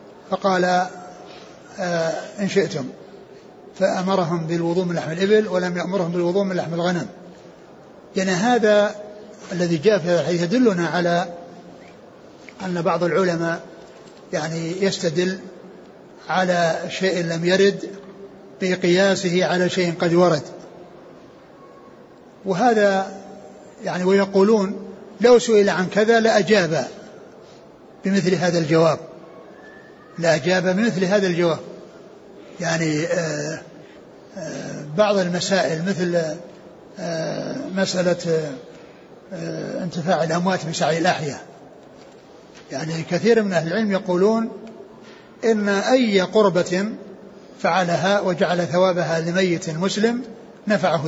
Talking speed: 95 wpm